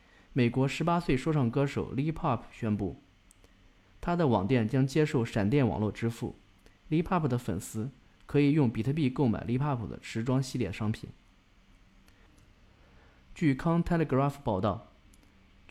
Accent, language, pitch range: native, Chinese, 100-145 Hz